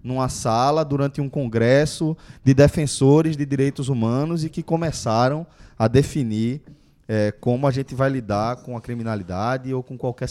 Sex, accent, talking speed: male, Brazilian, 150 wpm